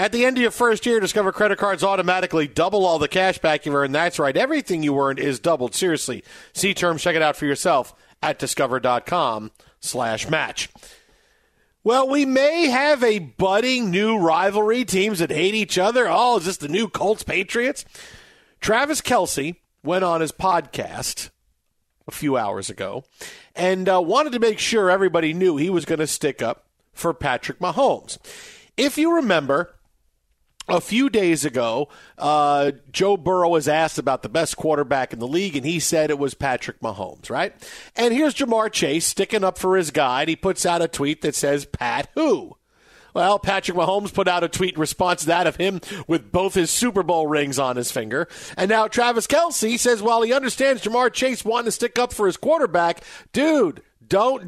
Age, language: 50-69, English